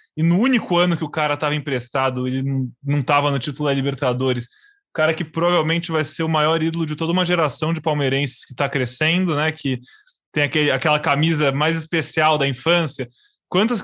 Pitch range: 150-195 Hz